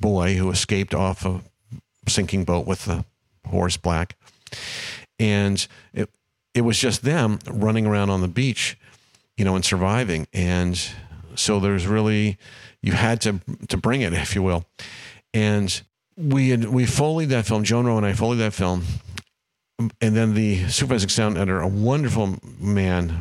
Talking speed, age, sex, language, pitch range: 160 wpm, 50-69, male, English, 95-115 Hz